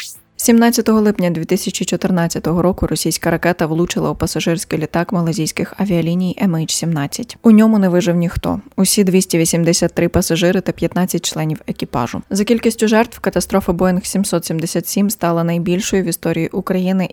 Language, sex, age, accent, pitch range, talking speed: Ukrainian, female, 20-39, native, 170-195 Hz, 125 wpm